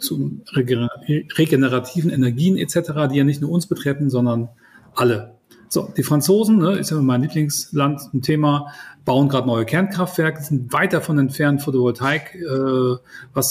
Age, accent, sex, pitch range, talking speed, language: 40-59, German, male, 130-170 Hz, 145 wpm, German